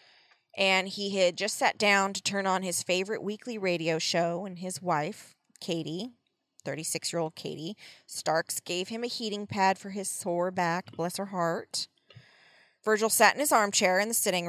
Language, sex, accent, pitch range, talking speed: English, female, American, 165-205 Hz, 170 wpm